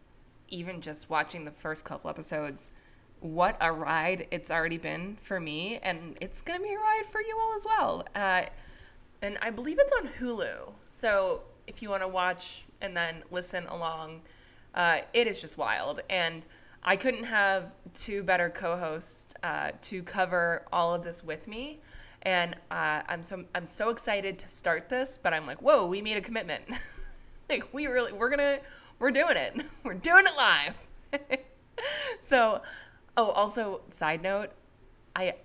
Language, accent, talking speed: English, American, 170 wpm